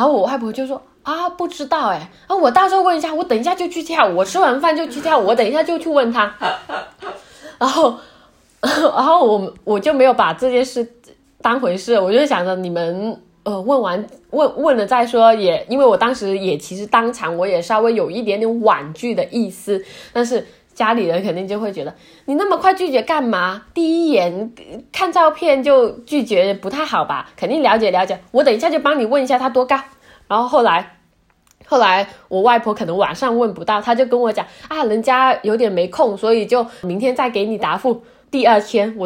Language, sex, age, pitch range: Chinese, female, 20-39, 210-295 Hz